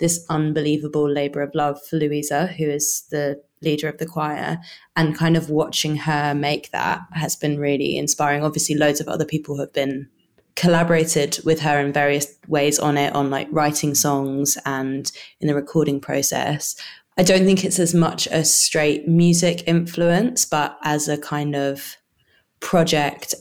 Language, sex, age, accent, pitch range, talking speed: English, female, 20-39, British, 145-170 Hz, 165 wpm